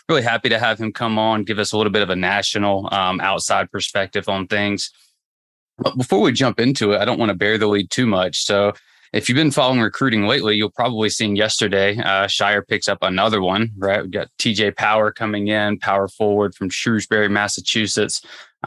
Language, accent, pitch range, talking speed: English, American, 100-115 Hz, 205 wpm